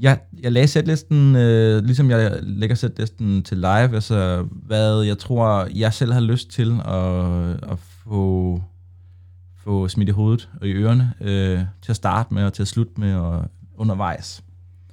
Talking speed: 170 wpm